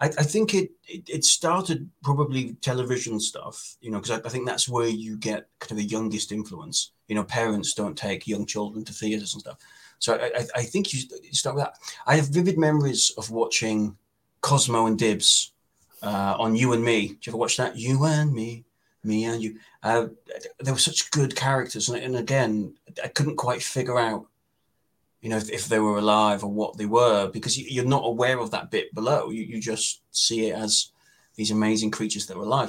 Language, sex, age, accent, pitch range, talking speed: English, male, 30-49, British, 110-145 Hz, 200 wpm